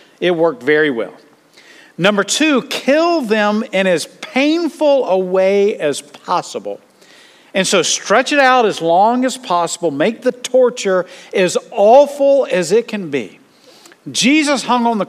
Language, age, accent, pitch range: English, 50-69, American, 175-255 Hz